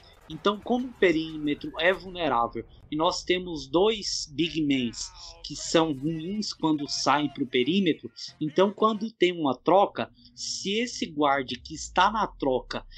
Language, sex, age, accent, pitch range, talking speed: Portuguese, male, 20-39, Brazilian, 145-195 Hz, 150 wpm